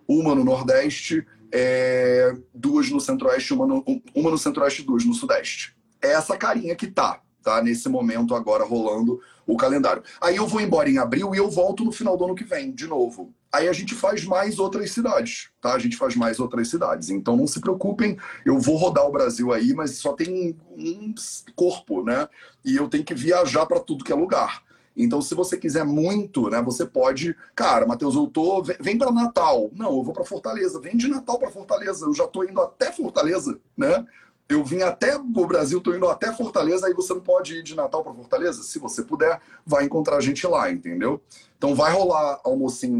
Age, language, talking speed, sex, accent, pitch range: 30-49, Portuguese, 205 wpm, male, Brazilian, 160-265 Hz